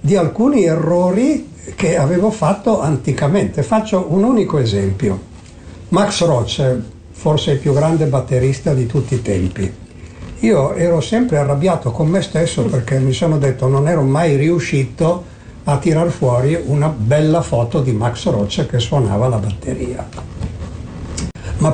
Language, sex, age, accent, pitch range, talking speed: Italian, male, 60-79, native, 125-170 Hz, 140 wpm